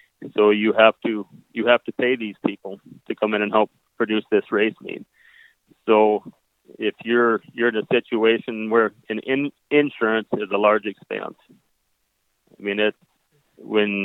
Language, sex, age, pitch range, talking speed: English, male, 30-49, 105-115 Hz, 160 wpm